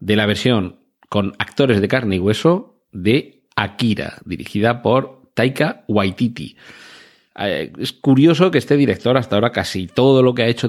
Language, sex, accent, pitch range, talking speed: Spanish, male, Spanish, 95-120 Hz, 165 wpm